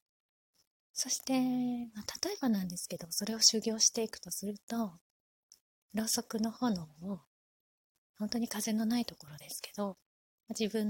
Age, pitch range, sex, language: 20-39, 185-235 Hz, female, Japanese